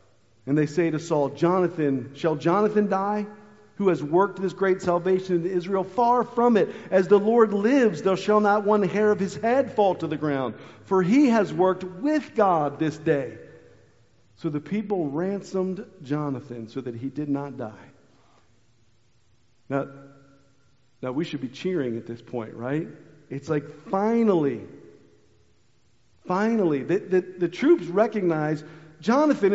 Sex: male